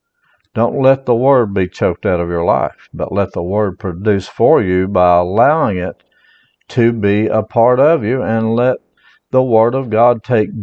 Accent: American